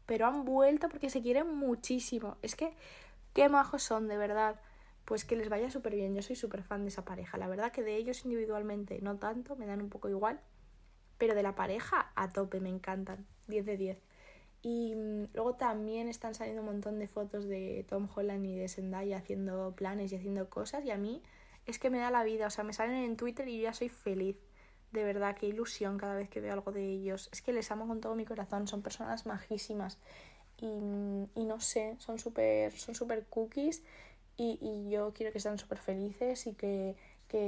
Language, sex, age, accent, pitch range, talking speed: Spanish, female, 20-39, Spanish, 195-230 Hz, 215 wpm